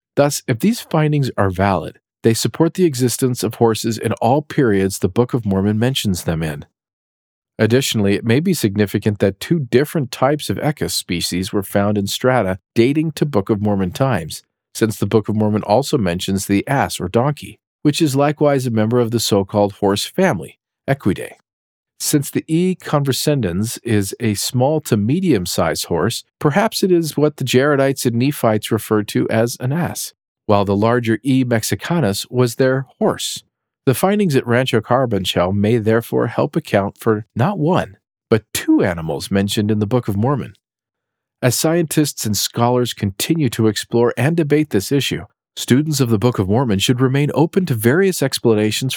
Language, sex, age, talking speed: English, male, 40-59, 175 wpm